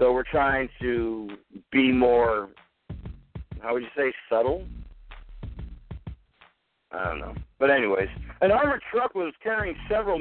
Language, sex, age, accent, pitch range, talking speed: English, male, 60-79, American, 130-165 Hz, 130 wpm